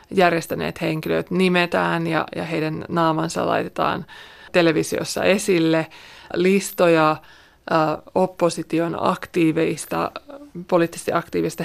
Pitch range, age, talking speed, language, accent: 165-185 Hz, 20-39, 75 wpm, Finnish, native